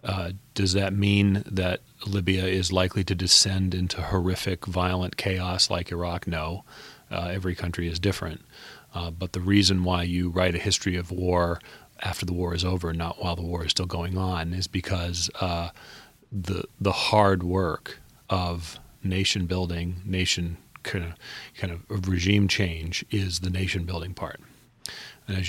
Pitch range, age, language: 85-95 Hz, 40-59, English